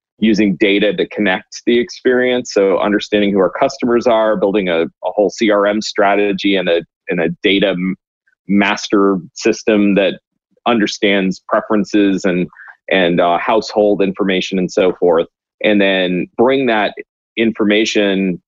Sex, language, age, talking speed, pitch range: male, English, 30-49, 135 wpm, 95-110 Hz